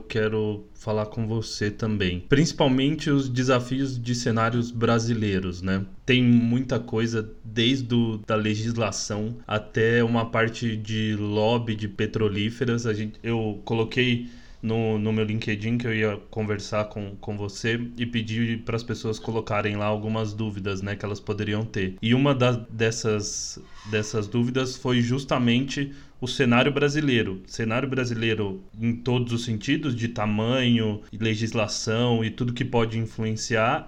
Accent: Brazilian